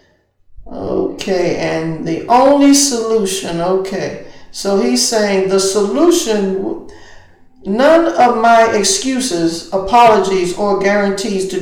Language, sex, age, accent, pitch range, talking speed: English, male, 50-69, American, 160-200 Hz, 100 wpm